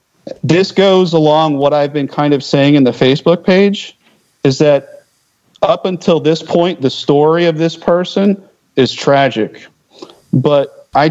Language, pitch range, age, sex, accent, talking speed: English, 125-155 Hz, 40-59, male, American, 150 wpm